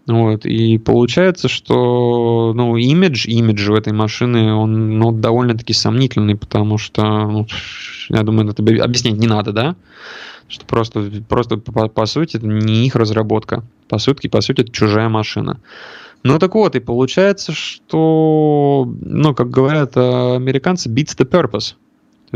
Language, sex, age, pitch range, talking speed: Russian, male, 20-39, 110-150 Hz, 150 wpm